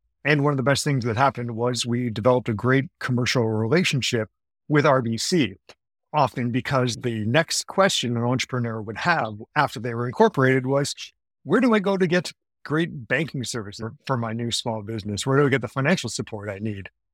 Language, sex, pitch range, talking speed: English, male, 115-145 Hz, 190 wpm